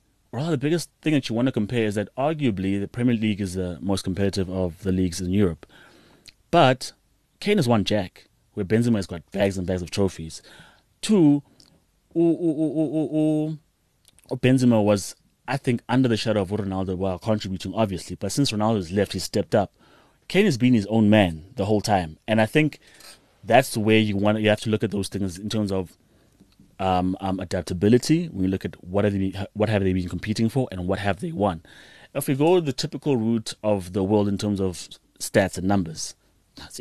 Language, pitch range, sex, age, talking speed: English, 95-125 Hz, male, 30-49, 210 wpm